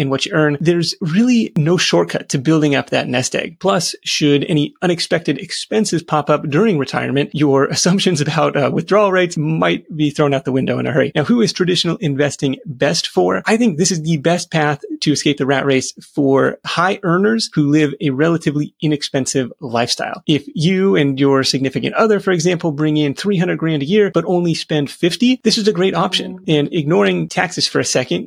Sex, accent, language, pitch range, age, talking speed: male, American, English, 145-185 Hz, 30-49, 200 wpm